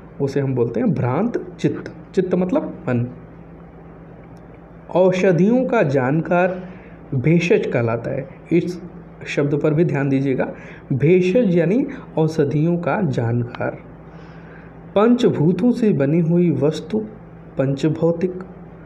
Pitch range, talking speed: 140-185 Hz, 100 wpm